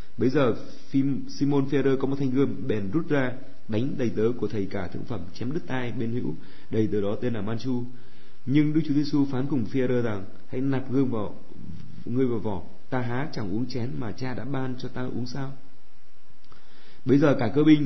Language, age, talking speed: Vietnamese, 20-39, 215 wpm